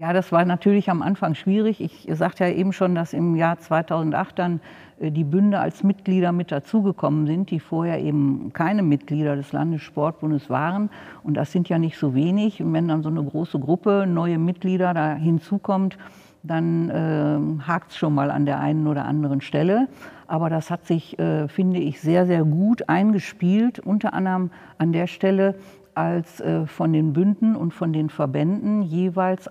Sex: female